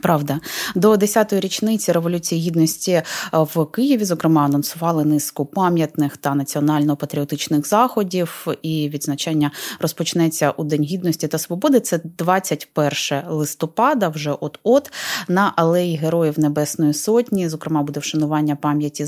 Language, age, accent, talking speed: Ukrainian, 20-39, native, 115 wpm